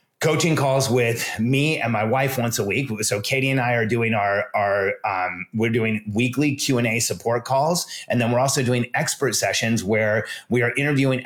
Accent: American